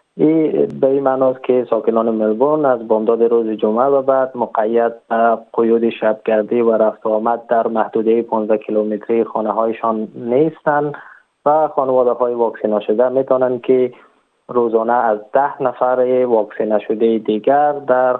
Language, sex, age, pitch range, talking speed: Persian, male, 20-39, 110-130 Hz, 130 wpm